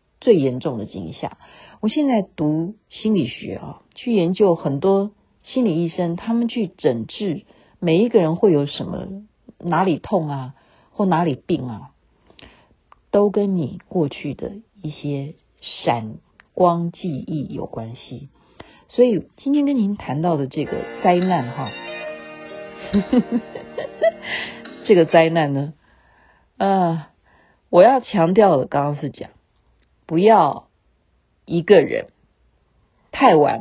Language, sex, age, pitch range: Chinese, female, 50-69, 145-205 Hz